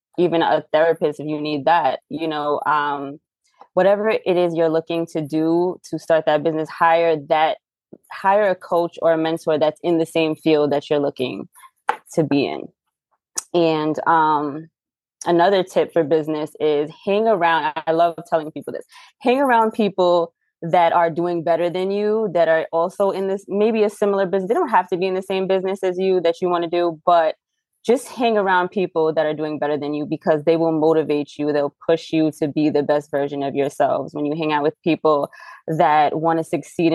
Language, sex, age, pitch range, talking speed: English, female, 20-39, 155-185 Hz, 200 wpm